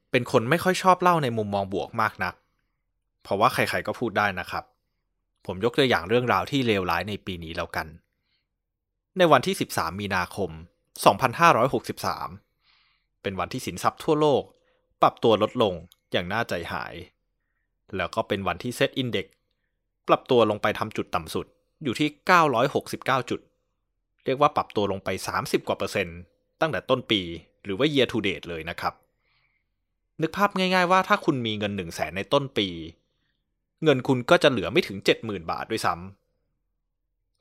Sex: male